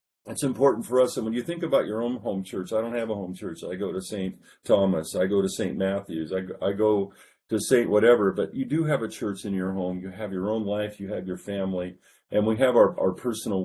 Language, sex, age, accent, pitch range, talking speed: English, male, 40-59, American, 95-115 Hz, 255 wpm